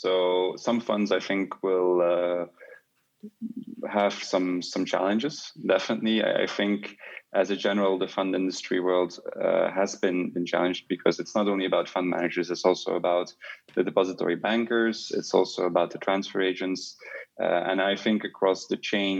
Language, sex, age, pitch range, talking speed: English, male, 20-39, 90-100 Hz, 165 wpm